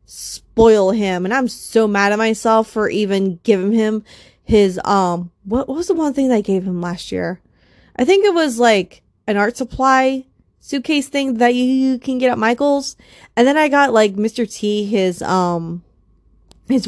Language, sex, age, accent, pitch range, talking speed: English, female, 20-39, American, 195-255 Hz, 185 wpm